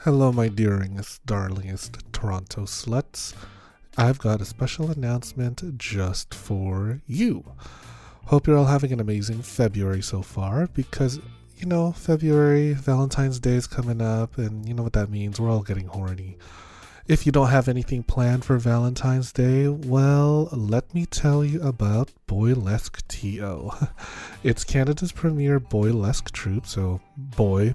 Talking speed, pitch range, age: 145 wpm, 105-135 Hz, 30-49